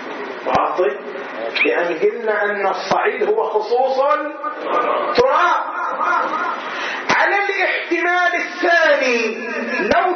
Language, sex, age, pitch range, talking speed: Arabic, male, 40-59, 225-345 Hz, 70 wpm